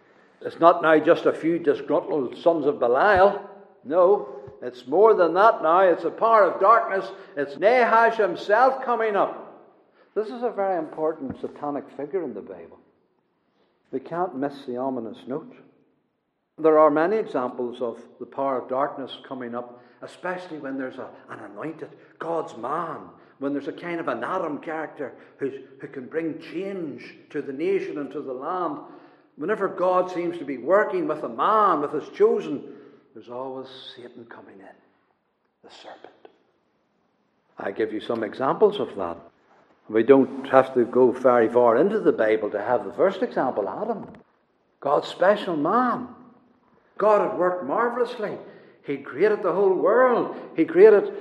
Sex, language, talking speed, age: male, English, 160 wpm, 60-79